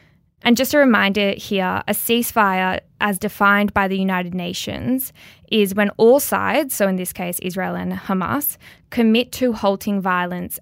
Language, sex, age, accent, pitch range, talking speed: English, female, 10-29, Australian, 185-230 Hz, 160 wpm